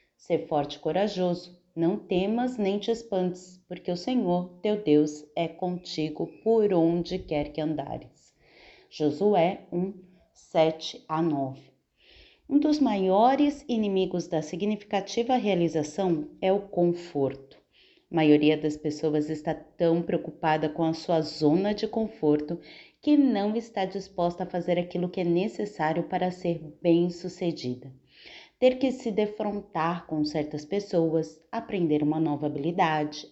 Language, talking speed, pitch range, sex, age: Portuguese, 135 wpm, 160-200 Hz, female, 30-49